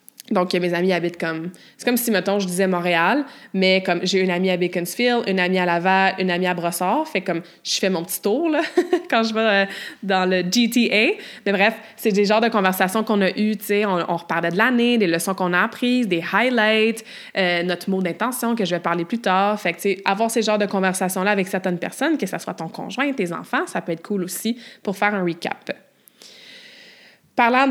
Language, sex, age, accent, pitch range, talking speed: French, female, 20-39, Canadian, 185-230 Hz, 225 wpm